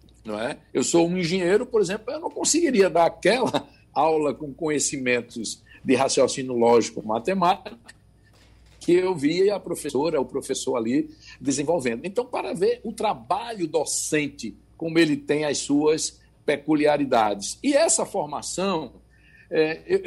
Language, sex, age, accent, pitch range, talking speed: Portuguese, male, 60-79, Brazilian, 130-175 Hz, 140 wpm